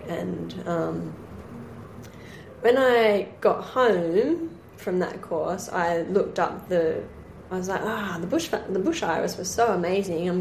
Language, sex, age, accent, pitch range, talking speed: English, female, 10-29, Australian, 180-225 Hz, 155 wpm